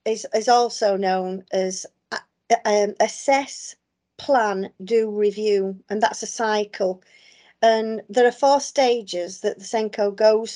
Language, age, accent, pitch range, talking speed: English, 40-59, British, 195-225 Hz, 130 wpm